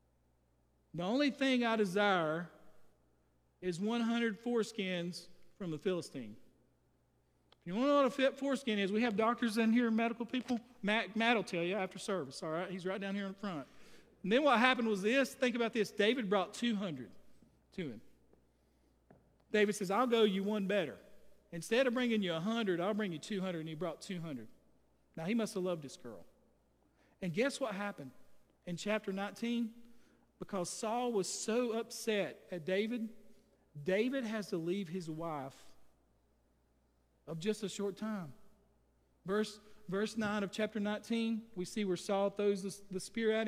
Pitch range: 175-225 Hz